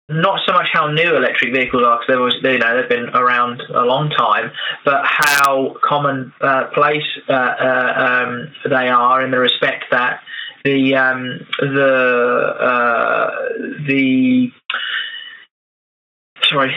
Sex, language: male, English